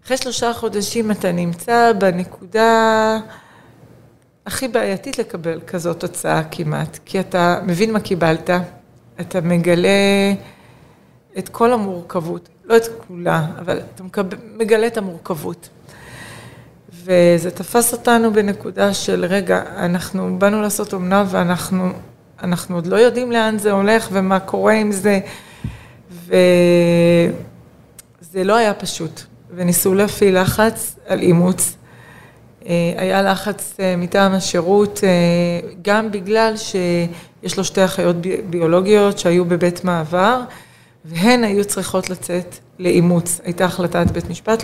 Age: 30-49